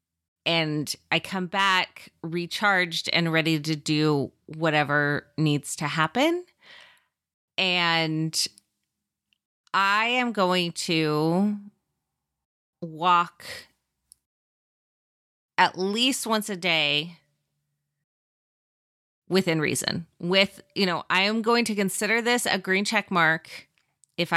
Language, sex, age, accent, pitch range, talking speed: English, female, 30-49, American, 160-195 Hz, 100 wpm